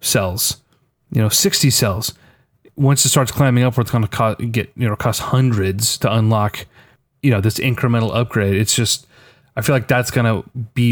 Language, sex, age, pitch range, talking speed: English, male, 30-49, 110-130 Hz, 185 wpm